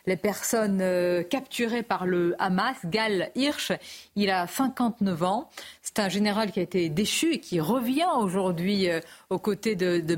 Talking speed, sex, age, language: 170 wpm, female, 40-59, French